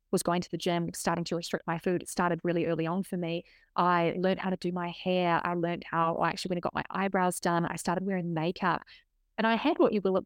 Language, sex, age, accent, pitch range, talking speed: English, female, 20-39, Australian, 175-200 Hz, 270 wpm